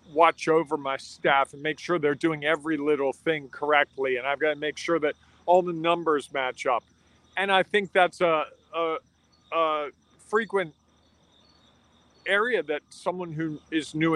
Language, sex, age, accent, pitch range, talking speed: English, male, 40-59, American, 145-175 Hz, 165 wpm